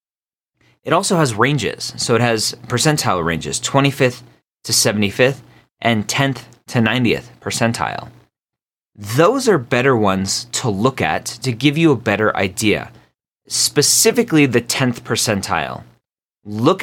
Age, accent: 30-49, American